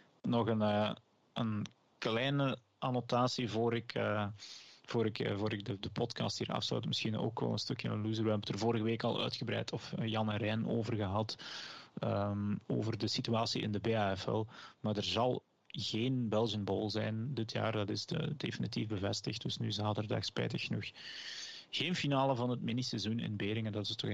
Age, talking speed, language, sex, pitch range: 30-49, 175 wpm, Dutch, male, 105-120 Hz